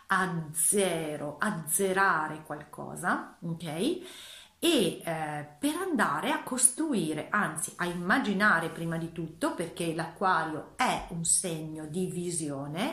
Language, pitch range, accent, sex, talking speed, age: Italian, 165-245 Hz, native, female, 110 wpm, 40-59